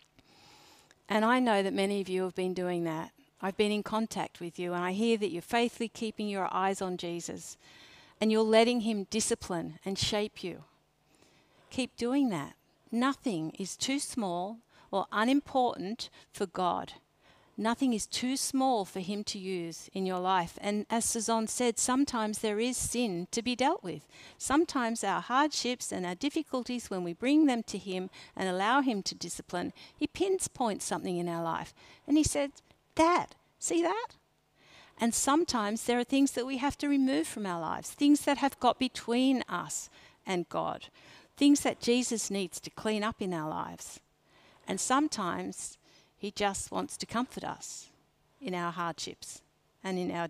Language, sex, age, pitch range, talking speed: English, female, 50-69, 185-255 Hz, 175 wpm